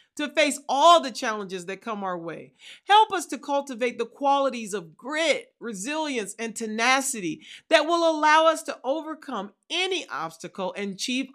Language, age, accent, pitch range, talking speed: English, 40-59, American, 225-315 Hz, 160 wpm